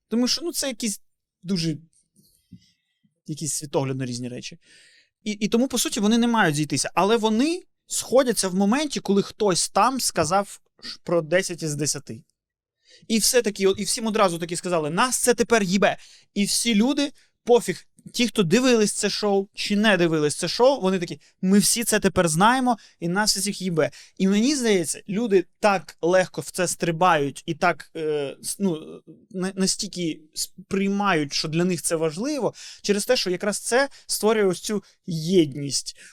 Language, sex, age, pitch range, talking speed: Ukrainian, male, 20-39, 160-210 Hz, 165 wpm